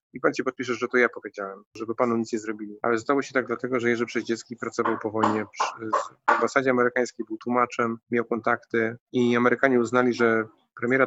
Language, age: Polish, 20-39